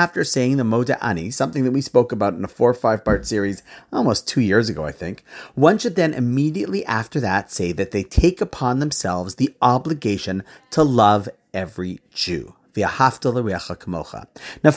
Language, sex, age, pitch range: English, male, 40-59, 115-165 Hz